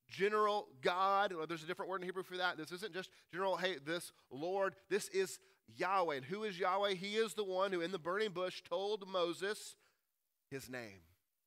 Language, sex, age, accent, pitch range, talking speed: English, male, 30-49, American, 160-200 Hz, 200 wpm